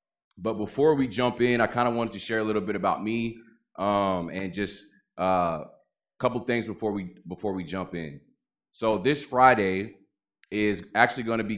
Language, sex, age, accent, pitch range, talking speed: English, male, 20-39, American, 95-115 Hz, 190 wpm